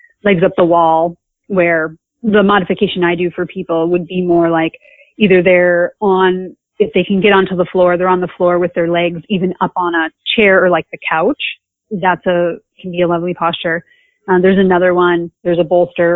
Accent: American